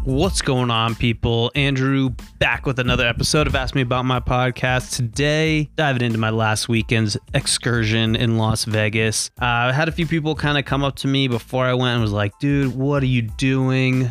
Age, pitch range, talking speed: 20-39, 110-125 Hz, 205 wpm